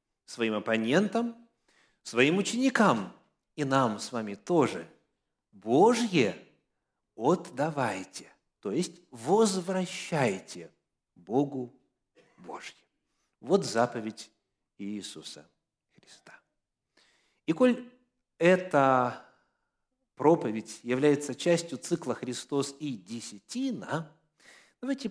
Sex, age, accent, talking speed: male, 50-69, native, 75 wpm